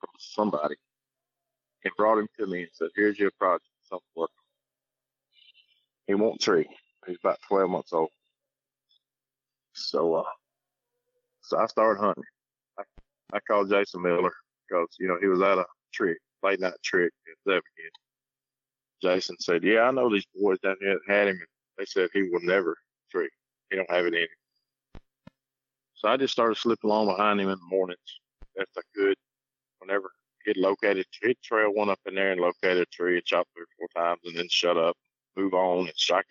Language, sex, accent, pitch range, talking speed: English, male, American, 95-135 Hz, 180 wpm